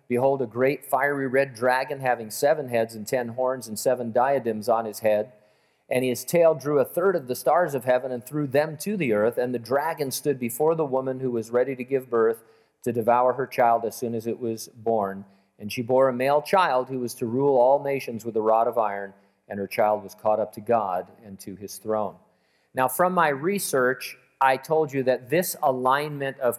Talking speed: 220 wpm